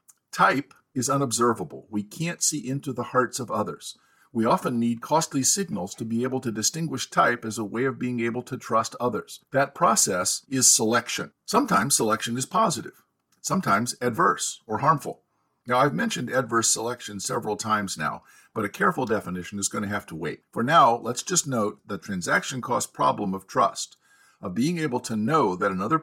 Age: 50-69